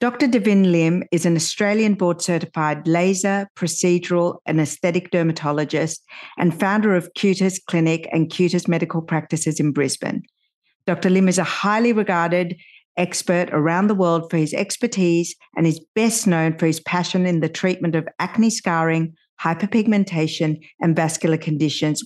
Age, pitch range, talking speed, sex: 50-69, 155-195 Hz, 145 wpm, female